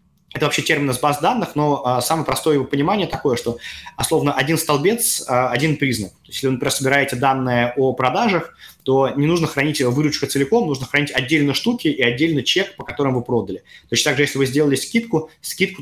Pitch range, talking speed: 120-145 Hz, 195 wpm